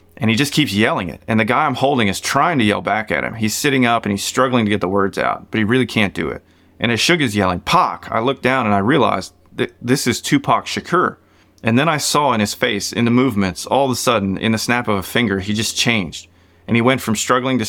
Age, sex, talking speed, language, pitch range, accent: 30-49, male, 270 wpm, English, 100-120 Hz, American